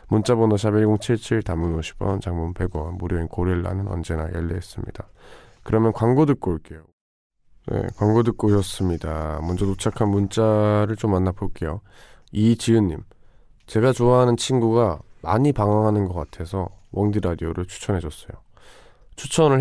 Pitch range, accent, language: 90-115 Hz, native, Korean